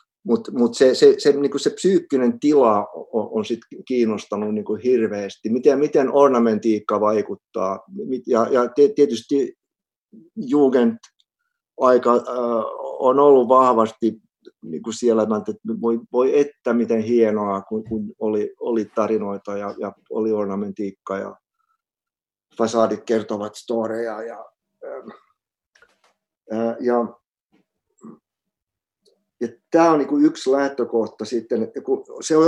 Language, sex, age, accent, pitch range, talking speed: Finnish, male, 50-69, native, 110-145 Hz, 115 wpm